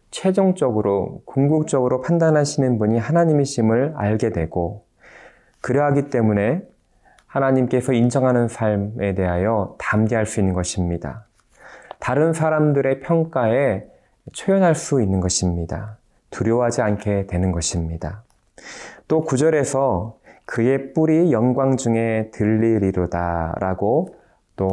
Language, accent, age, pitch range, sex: Korean, native, 20-39, 100-130 Hz, male